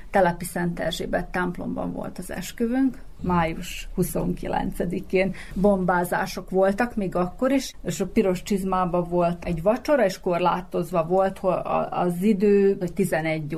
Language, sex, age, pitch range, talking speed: Hungarian, female, 40-59, 180-215 Hz, 125 wpm